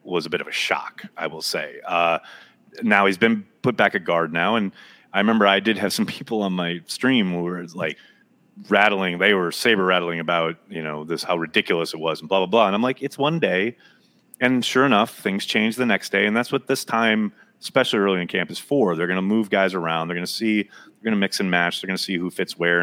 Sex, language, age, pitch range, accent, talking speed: male, English, 30-49, 85-110 Hz, American, 250 wpm